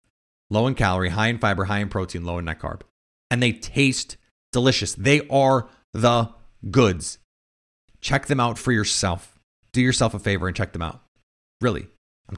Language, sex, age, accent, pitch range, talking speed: English, male, 30-49, American, 110-150 Hz, 175 wpm